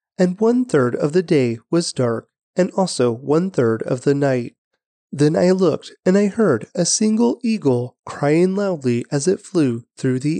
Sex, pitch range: male, 130-195 Hz